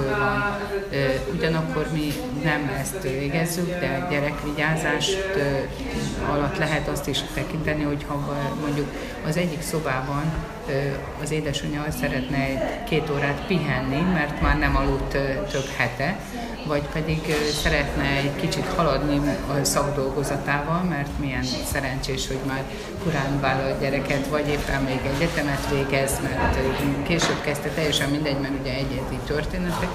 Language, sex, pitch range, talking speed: Hungarian, female, 140-170 Hz, 120 wpm